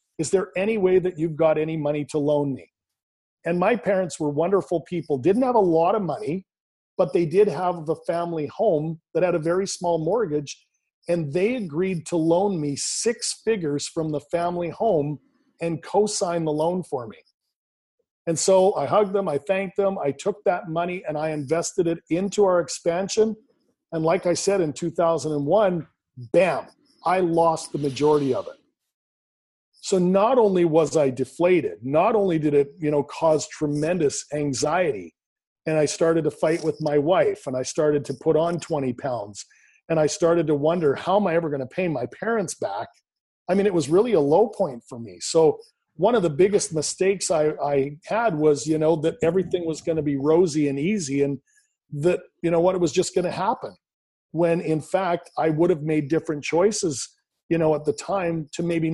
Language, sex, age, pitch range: English, male, 40-59, 155-185 Hz